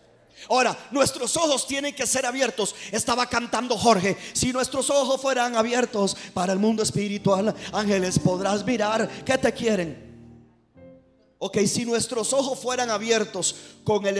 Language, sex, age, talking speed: Spanish, male, 40-59, 140 wpm